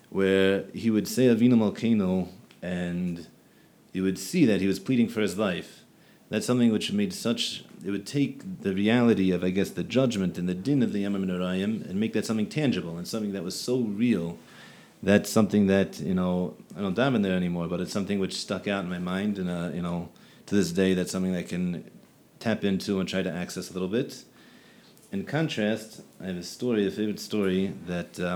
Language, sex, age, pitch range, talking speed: English, male, 30-49, 95-115 Hz, 215 wpm